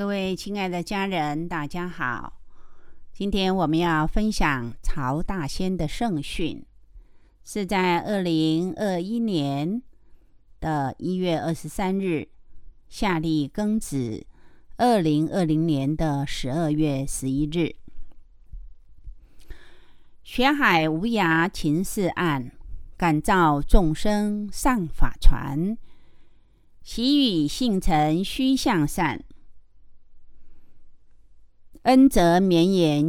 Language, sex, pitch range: Chinese, female, 150-205 Hz